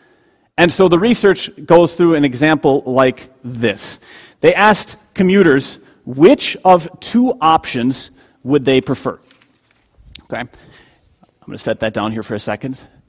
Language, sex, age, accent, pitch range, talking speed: English, male, 30-49, American, 130-180 Hz, 140 wpm